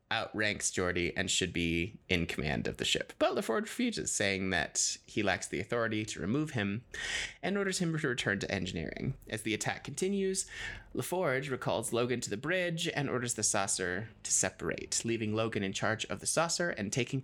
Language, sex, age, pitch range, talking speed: English, male, 20-39, 95-150 Hz, 190 wpm